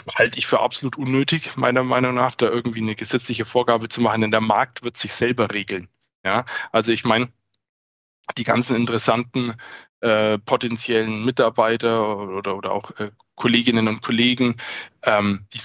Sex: male